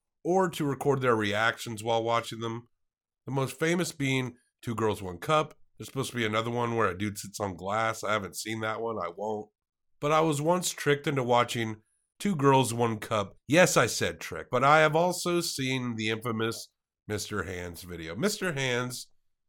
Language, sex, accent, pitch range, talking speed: English, male, American, 105-150 Hz, 190 wpm